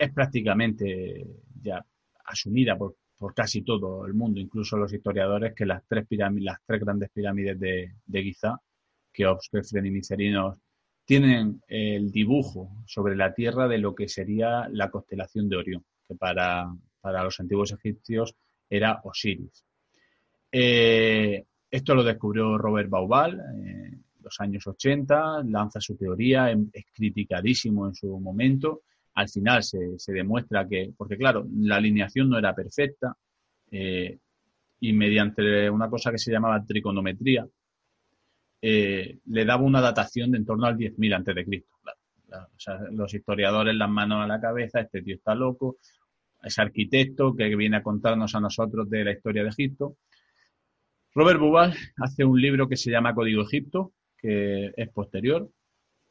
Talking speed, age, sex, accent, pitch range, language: 150 wpm, 30-49, male, Spanish, 100-120 Hz, Spanish